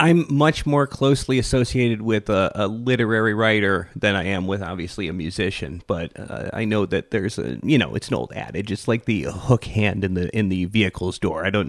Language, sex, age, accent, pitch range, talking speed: English, male, 30-49, American, 100-120 Hz, 220 wpm